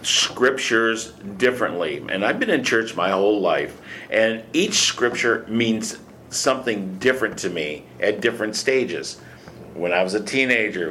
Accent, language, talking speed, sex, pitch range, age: American, English, 145 wpm, male, 95-125 Hz, 50-69